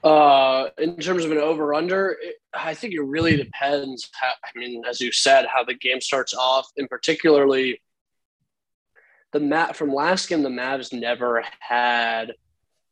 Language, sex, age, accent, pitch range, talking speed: English, male, 20-39, American, 120-145 Hz, 160 wpm